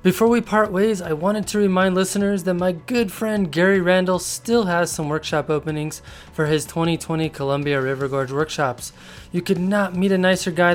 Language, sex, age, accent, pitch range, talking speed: English, male, 20-39, American, 150-195 Hz, 190 wpm